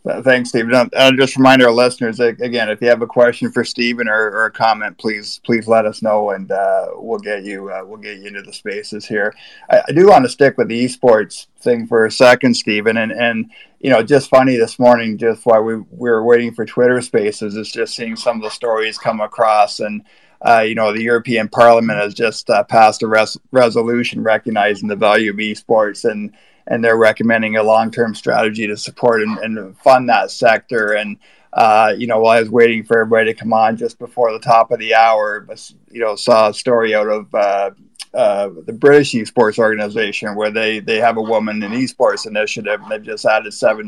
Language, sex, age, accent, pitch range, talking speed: English, male, 50-69, American, 105-120 Hz, 215 wpm